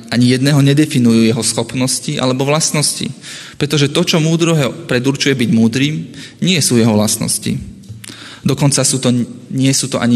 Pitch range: 115-140 Hz